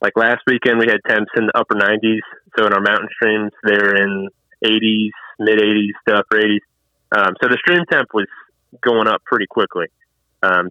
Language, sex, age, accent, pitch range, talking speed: English, male, 20-39, American, 100-115 Hz, 185 wpm